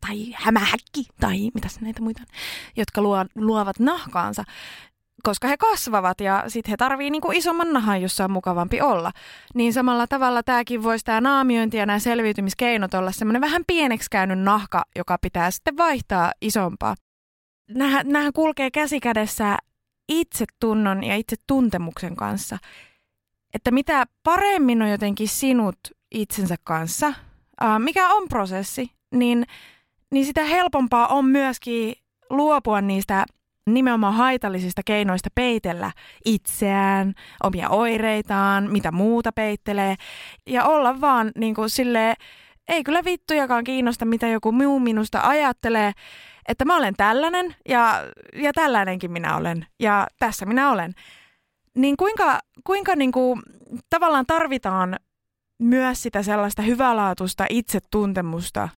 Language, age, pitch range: Finnish, 20-39, 200-265 Hz